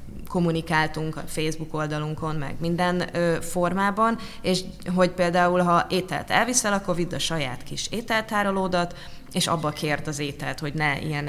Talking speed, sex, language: 150 wpm, female, Hungarian